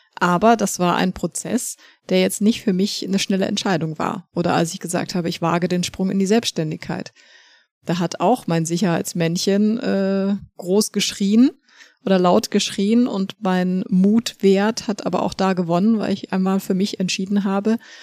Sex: female